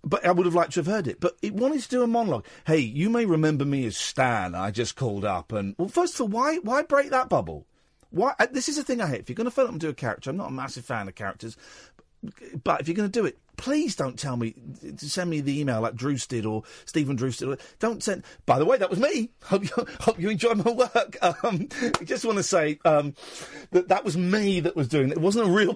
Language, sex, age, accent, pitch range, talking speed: English, male, 50-69, British, 125-210 Hz, 275 wpm